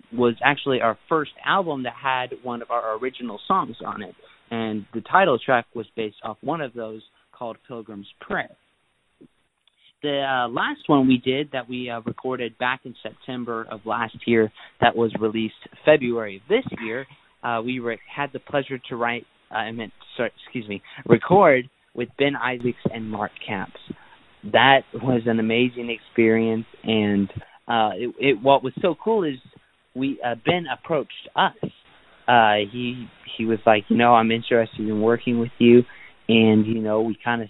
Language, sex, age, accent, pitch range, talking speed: English, male, 30-49, American, 110-130 Hz, 175 wpm